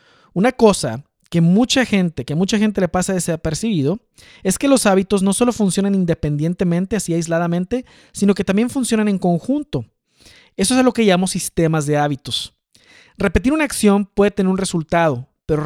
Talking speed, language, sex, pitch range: 170 wpm, Spanish, male, 165-215 Hz